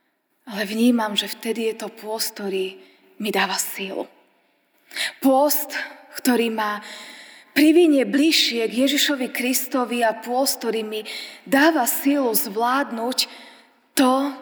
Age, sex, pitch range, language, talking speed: 20-39, female, 220-285 Hz, Slovak, 110 wpm